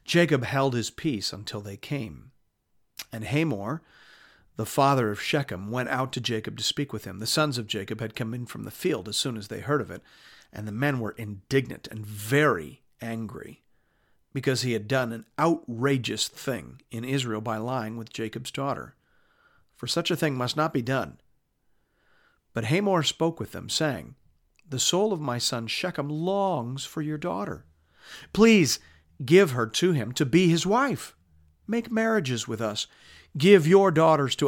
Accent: American